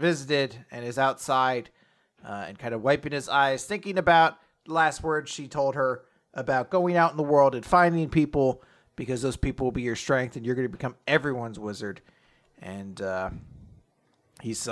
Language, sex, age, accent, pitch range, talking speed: English, male, 30-49, American, 110-155 Hz, 185 wpm